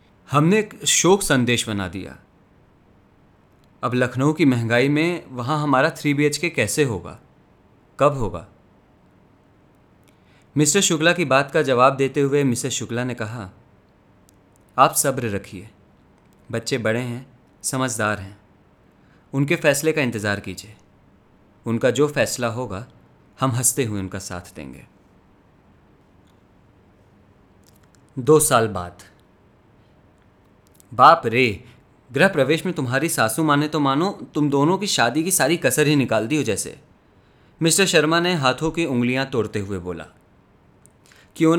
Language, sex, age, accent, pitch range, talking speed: Hindi, male, 30-49, native, 100-150 Hz, 130 wpm